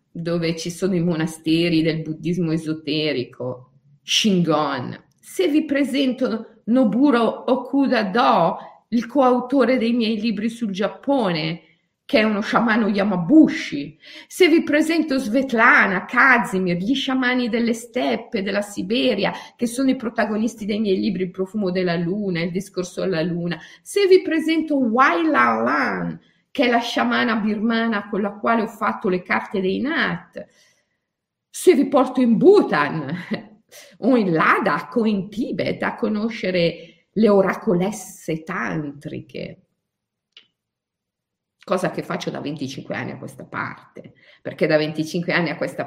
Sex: female